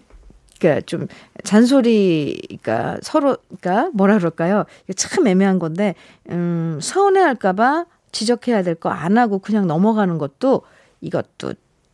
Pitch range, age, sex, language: 180-255 Hz, 50-69, female, Korean